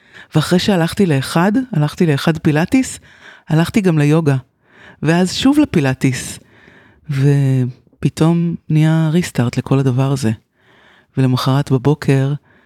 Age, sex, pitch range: 30-49, female, 135-175 Hz